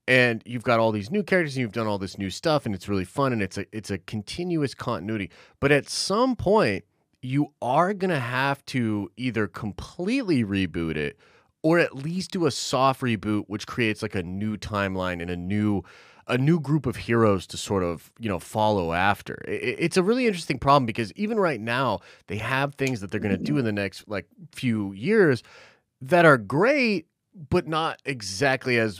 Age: 30-49